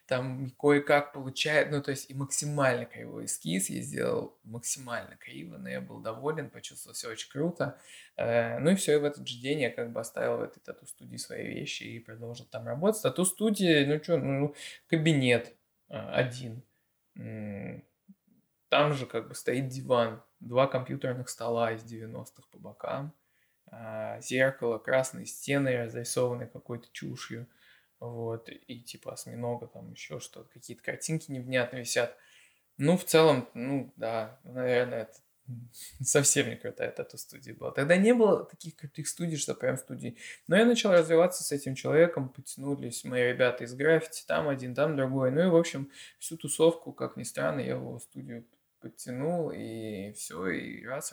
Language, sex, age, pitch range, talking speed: Russian, male, 20-39, 120-150 Hz, 160 wpm